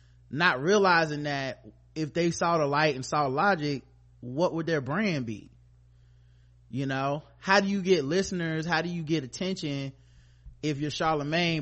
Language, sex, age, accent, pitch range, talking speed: English, male, 20-39, American, 130-180 Hz, 160 wpm